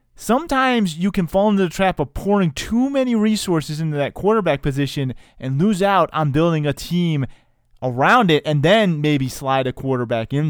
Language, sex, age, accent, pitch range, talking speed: English, male, 20-39, American, 125-165 Hz, 185 wpm